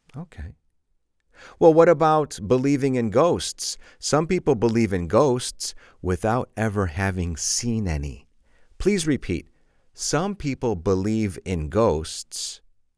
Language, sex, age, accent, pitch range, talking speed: English, male, 40-59, American, 80-115 Hz, 110 wpm